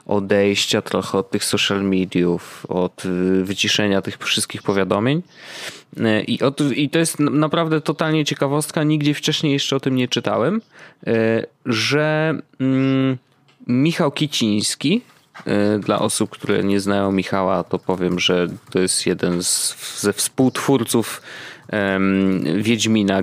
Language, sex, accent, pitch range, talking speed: Polish, male, native, 95-135 Hz, 110 wpm